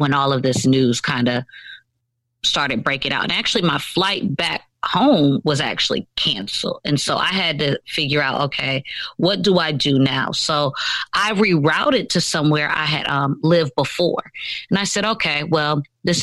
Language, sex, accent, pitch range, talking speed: English, female, American, 140-185 Hz, 180 wpm